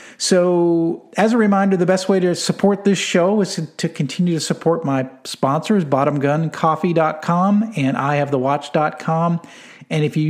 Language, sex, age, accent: English, male, 50-69, American